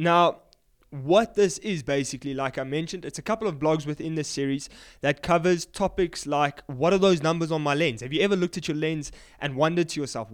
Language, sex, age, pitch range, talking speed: English, male, 20-39, 140-170 Hz, 220 wpm